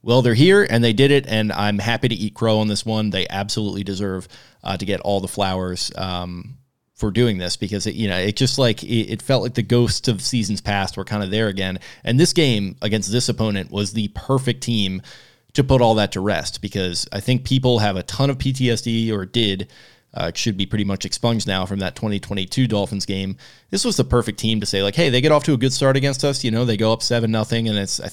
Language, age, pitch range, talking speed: English, 20-39, 100-120 Hz, 250 wpm